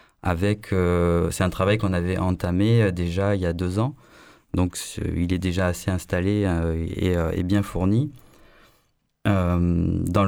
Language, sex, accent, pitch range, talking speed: French, male, French, 90-110 Hz, 165 wpm